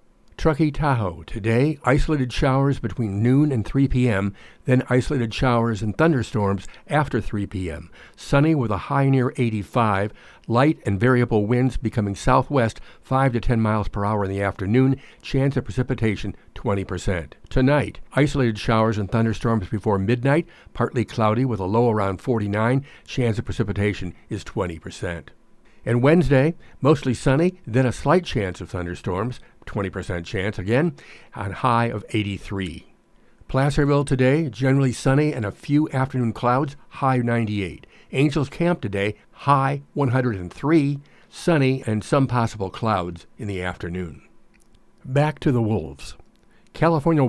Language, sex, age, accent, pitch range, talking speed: English, male, 60-79, American, 100-135 Hz, 135 wpm